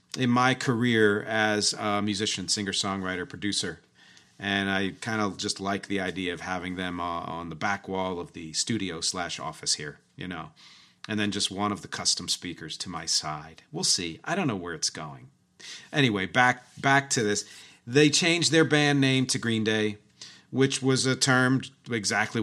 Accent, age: American, 40-59